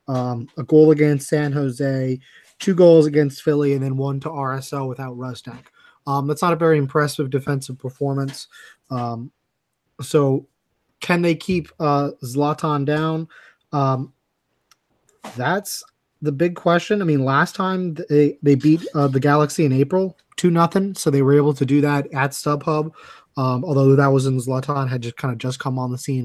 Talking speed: 175 wpm